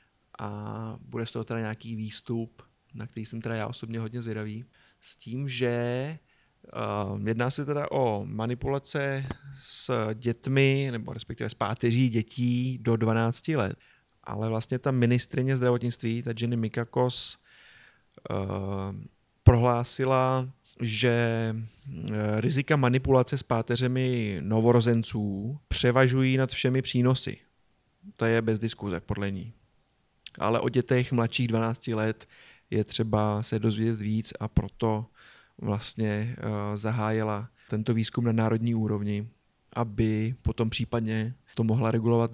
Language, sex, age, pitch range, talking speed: Czech, male, 30-49, 110-125 Hz, 125 wpm